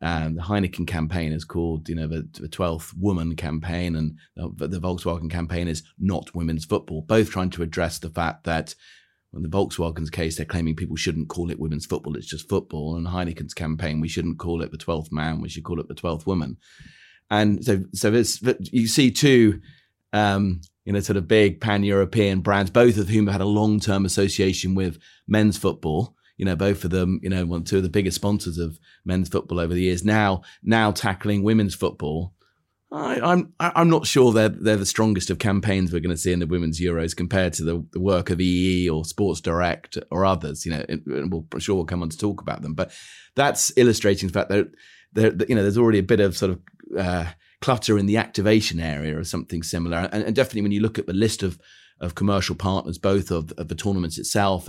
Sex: male